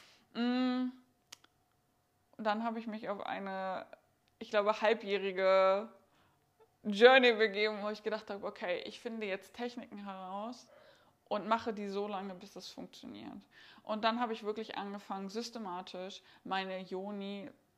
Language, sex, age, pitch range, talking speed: German, female, 20-39, 205-245 Hz, 130 wpm